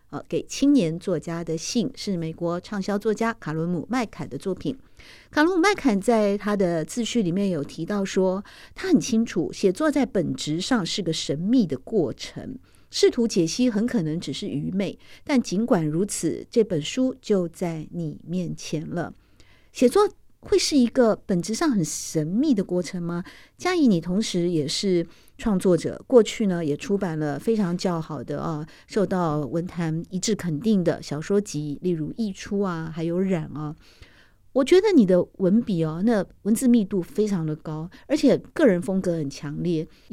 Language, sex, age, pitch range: Chinese, female, 50-69, 165-230 Hz